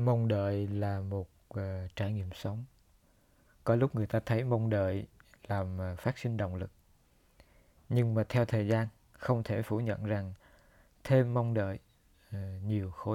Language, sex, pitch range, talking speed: Vietnamese, male, 100-120 Hz, 155 wpm